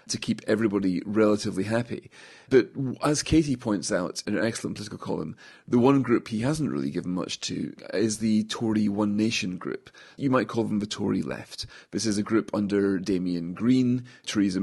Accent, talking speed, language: British, 185 wpm, English